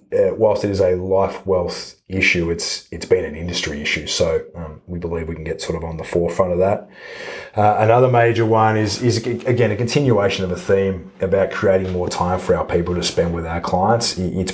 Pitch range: 90-100 Hz